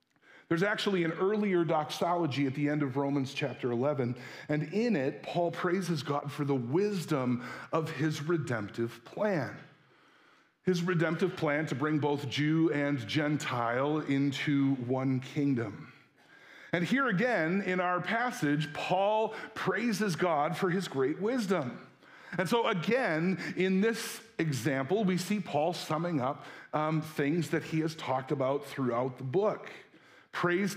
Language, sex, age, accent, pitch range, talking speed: English, male, 50-69, American, 140-180 Hz, 140 wpm